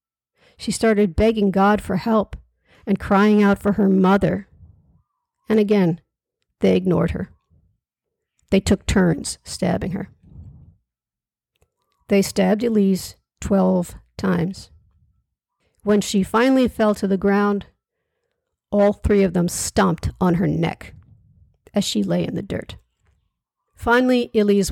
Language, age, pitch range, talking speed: English, 50-69, 185-220 Hz, 120 wpm